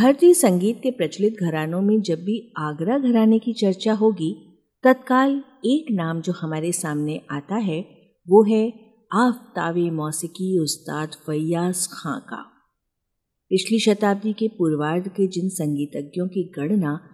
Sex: female